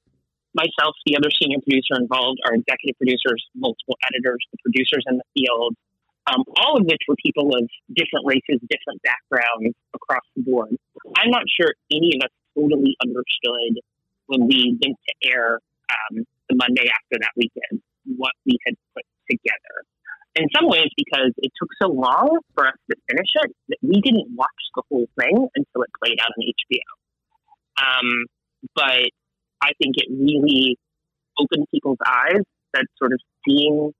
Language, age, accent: English, 30-49, American